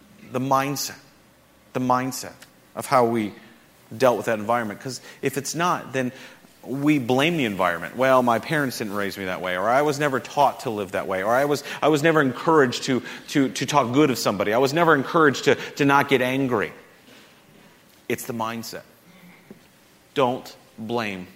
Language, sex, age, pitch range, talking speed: English, male, 30-49, 115-150 Hz, 185 wpm